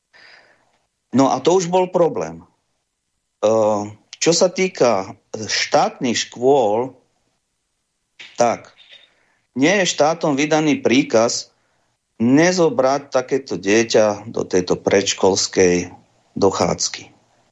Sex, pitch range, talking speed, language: male, 115-160 Hz, 80 wpm, Slovak